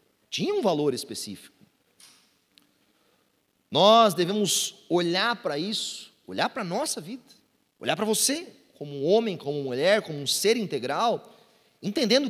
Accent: Brazilian